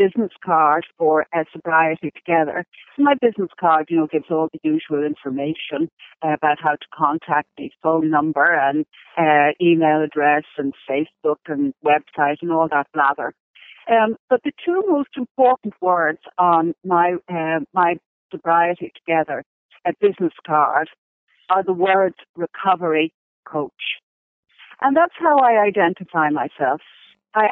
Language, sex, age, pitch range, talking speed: English, female, 50-69, 160-200 Hz, 140 wpm